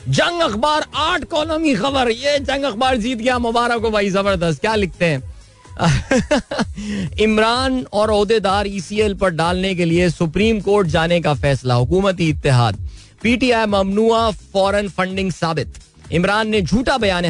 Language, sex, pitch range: Hindi, male, 145-205 Hz